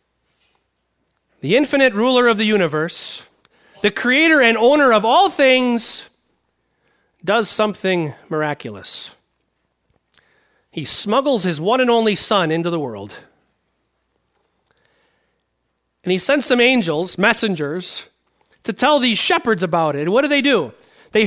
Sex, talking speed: male, 120 wpm